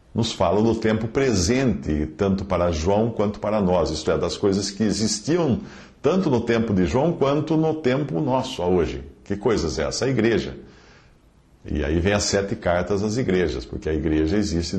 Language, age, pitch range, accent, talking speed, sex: Portuguese, 50-69, 95-135 Hz, Brazilian, 185 wpm, male